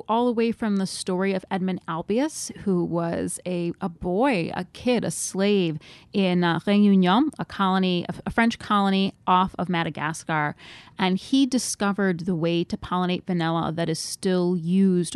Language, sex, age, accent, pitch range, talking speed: English, female, 30-49, American, 175-220 Hz, 160 wpm